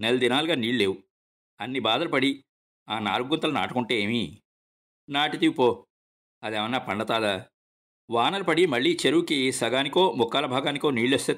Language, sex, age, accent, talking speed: Telugu, male, 50-69, native, 125 wpm